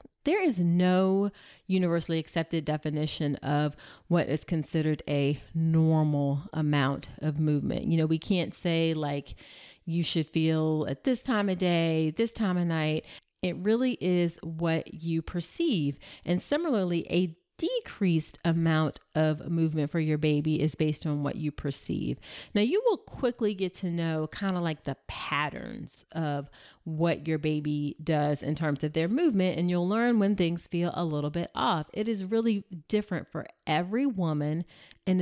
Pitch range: 155-190 Hz